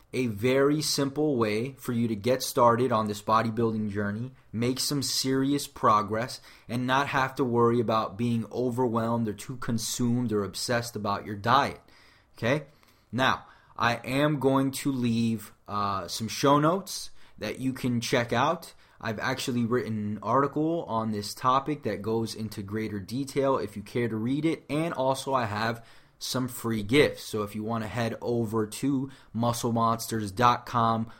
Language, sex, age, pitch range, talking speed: English, male, 20-39, 110-135 Hz, 160 wpm